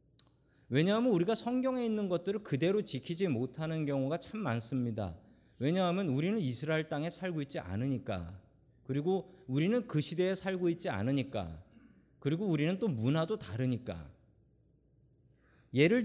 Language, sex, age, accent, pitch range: Korean, male, 40-59, native, 115-195 Hz